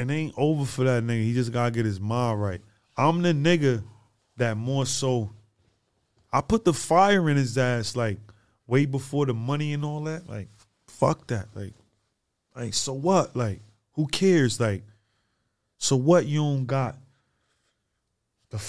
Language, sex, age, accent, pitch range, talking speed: English, male, 20-39, American, 110-145 Hz, 165 wpm